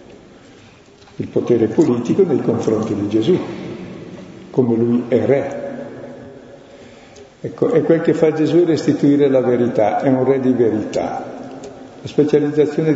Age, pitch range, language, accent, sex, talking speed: 50-69, 110-130 Hz, Italian, native, male, 125 wpm